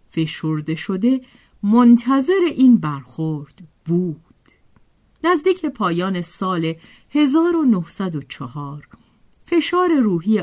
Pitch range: 160-255 Hz